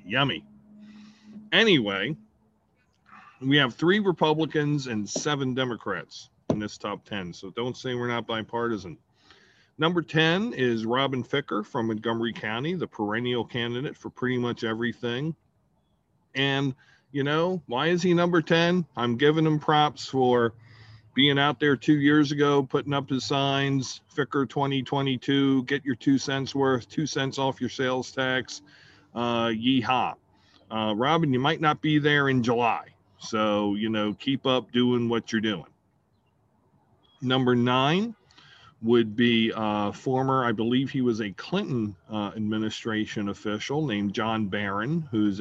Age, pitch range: 40-59, 110-145 Hz